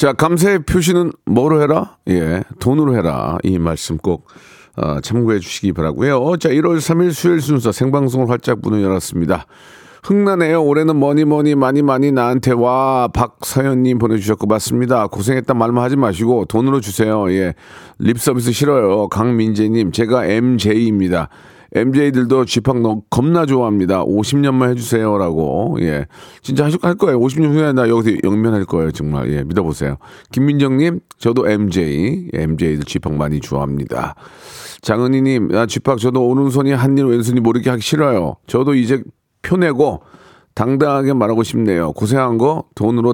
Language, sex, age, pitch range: Korean, male, 40-59, 105-140 Hz